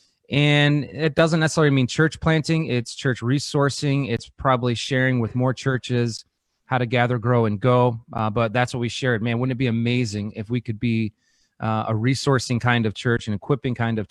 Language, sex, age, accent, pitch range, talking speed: English, male, 30-49, American, 115-135 Hz, 200 wpm